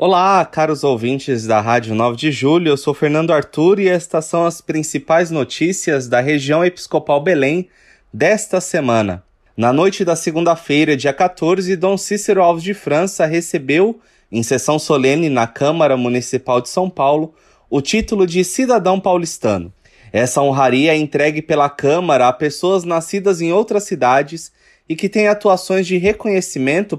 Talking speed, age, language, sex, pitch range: 150 wpm, 20-39, Portuguese, male, 140-185 Hz